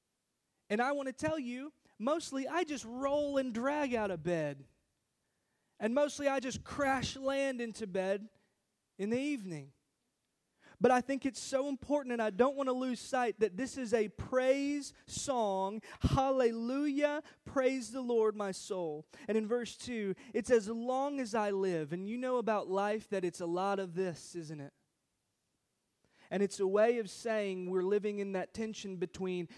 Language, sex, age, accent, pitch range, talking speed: English, male, 20-39, American, 180-245 Hz, 175 wpm